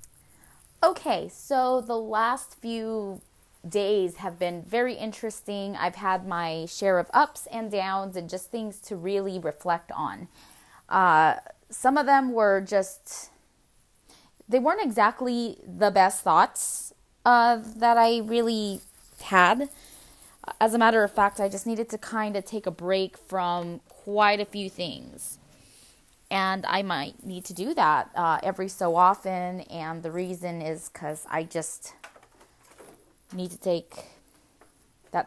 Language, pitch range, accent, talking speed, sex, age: English, 180-220 Hz, American, 140 wpm, female, 20-39